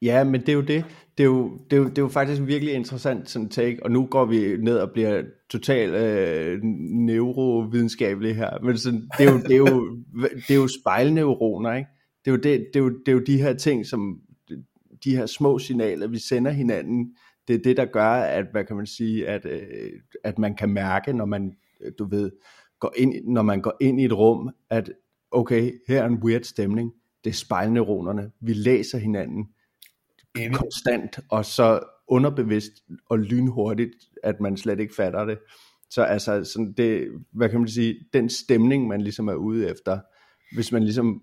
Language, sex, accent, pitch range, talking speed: Danish, male, native, 110-130 Hz, 195 wpm